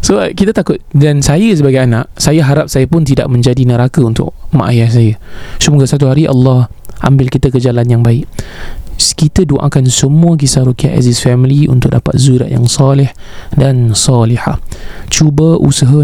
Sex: male